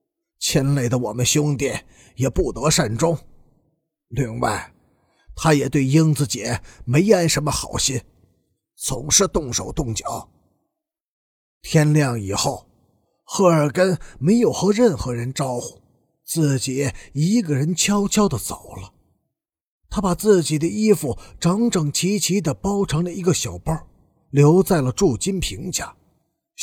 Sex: male